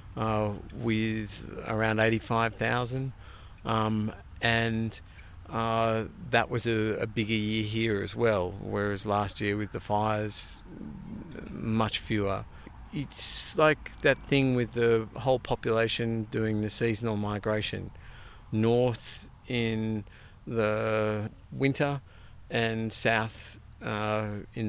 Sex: male